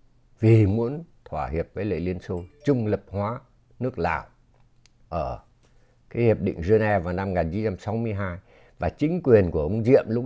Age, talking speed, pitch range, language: 60-79, 160 wpm, 85-115 Hz, Vietnamese